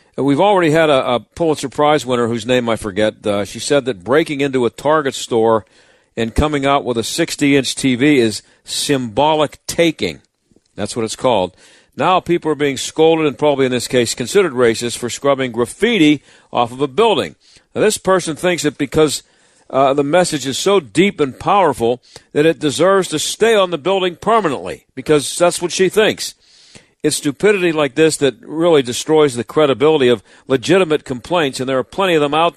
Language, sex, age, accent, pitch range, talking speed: English, male, 50-69, American, 125-165 Hz, 185 wpm